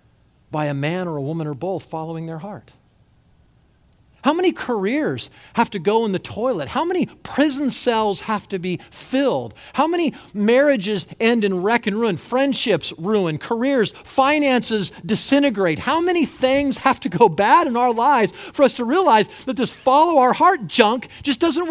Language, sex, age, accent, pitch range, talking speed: English, male, 40-59, American, 160-270 Hz, 170 wpm